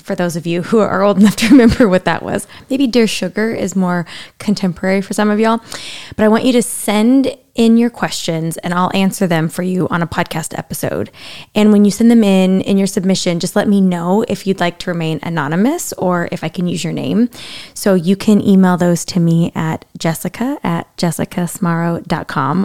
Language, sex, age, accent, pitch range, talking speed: English, female, 20-39, American, 175-215 Hz, 210 wpm